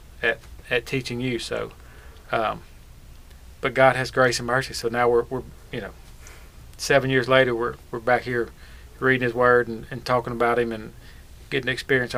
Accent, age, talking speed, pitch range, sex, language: American, 40-59, 180 wpm, 115-140 Hz, male, English